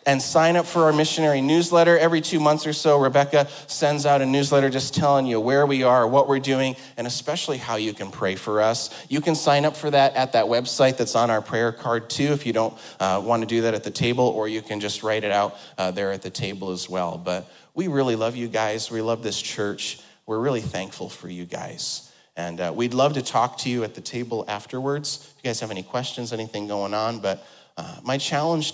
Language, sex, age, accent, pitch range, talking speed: English, male, 30-49, American, 105-140 Hz, 240 wpm